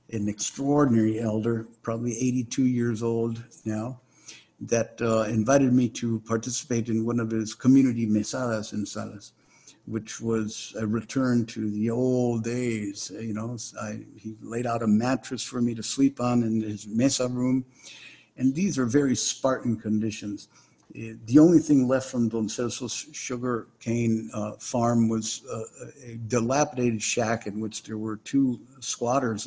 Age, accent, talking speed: 60-79, American, 150 wpm